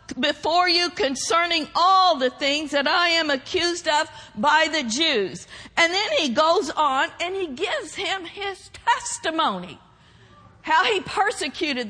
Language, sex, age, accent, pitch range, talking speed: English, female, 50-69, American, 285-360 Hz, 140 wpm